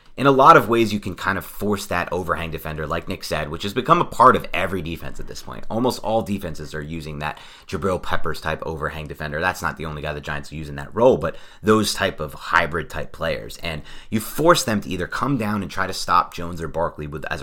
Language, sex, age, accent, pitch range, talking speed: English, male, 30-49, American, 80-115 Hz, 250 wpm